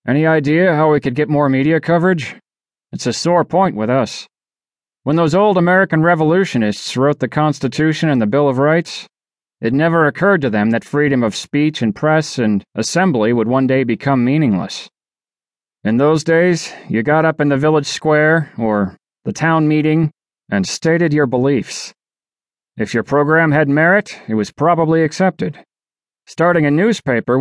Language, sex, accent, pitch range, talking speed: English, male, American, 125-160 Hz, 165 wpm